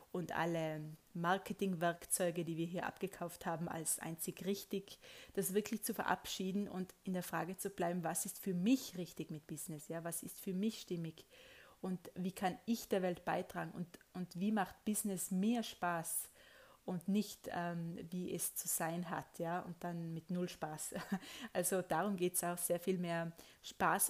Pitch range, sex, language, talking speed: 165-195 Hz, female, German, 175 wpm